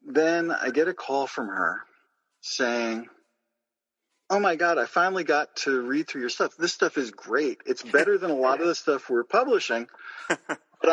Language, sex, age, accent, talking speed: English, male, 50-69, American, 185 wpm